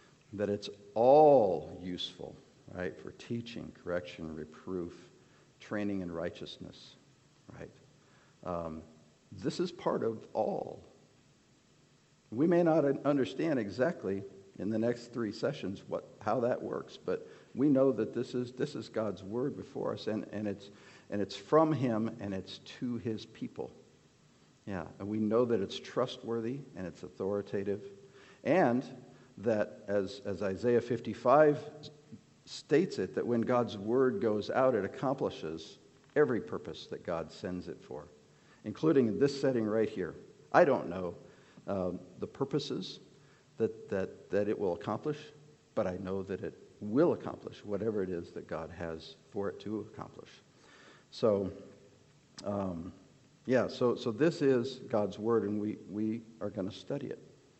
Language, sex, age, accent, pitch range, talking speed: English, male, 60-79, American, 95-125 Hz, 150 wpm